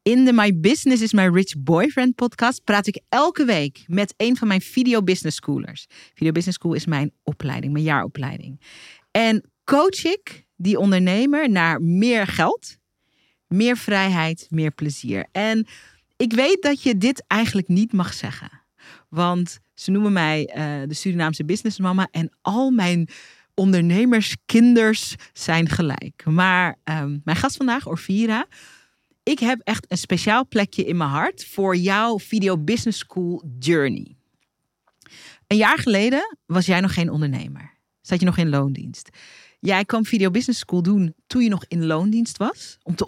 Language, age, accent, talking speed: Dutch, 40-59, Dutch, 155 wpm